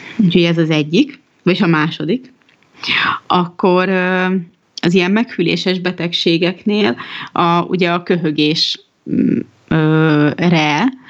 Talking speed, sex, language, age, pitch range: 80 wpm, female, Hungarian, 30-49, 165-190 Hz